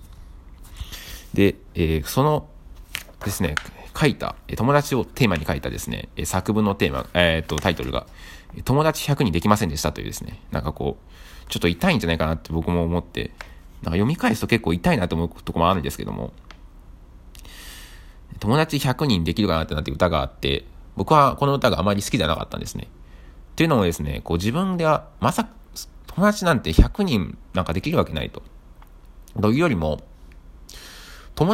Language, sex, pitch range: Japanese, male, 80-110 Hz